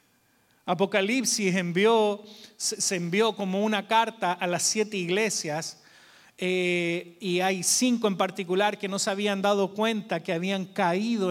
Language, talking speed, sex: Spanish, 135 wpm, male